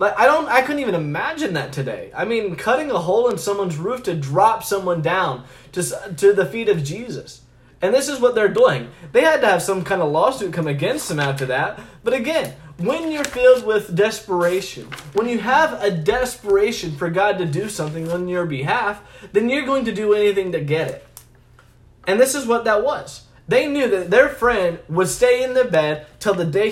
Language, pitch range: English, 175-250 Hz